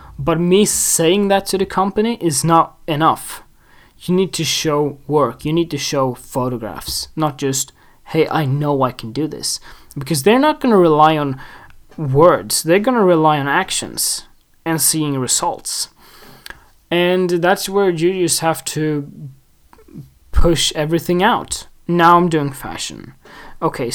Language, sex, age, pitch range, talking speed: English, male, 20-39, 140-170 Hz, 155 wpm